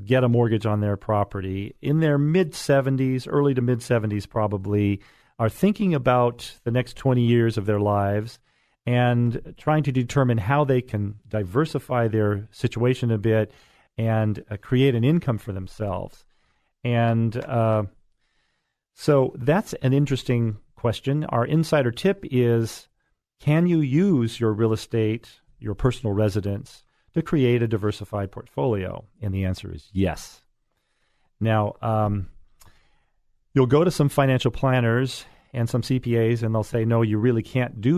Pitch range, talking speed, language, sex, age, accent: 105-130 Hz, 145 wpm, English, male, 40-59, American